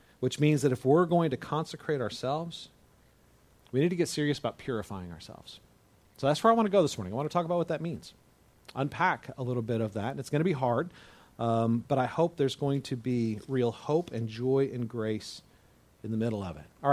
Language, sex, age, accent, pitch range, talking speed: English, male, 40-59, American, 125-165 Hz, 230 wpm